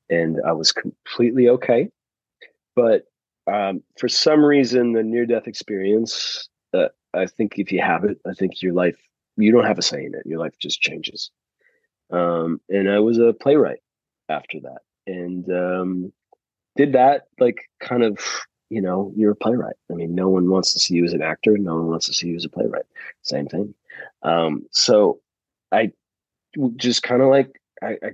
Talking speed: 185 wpm